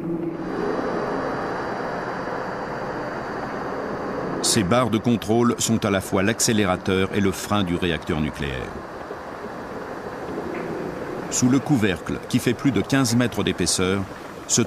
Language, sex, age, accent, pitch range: French, male, 50-69, French, 90-120 Hz